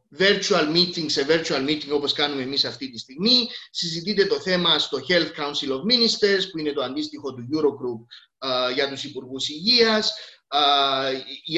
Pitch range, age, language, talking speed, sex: 145-220 Hz, 30-49, Greek, 155 wpm, male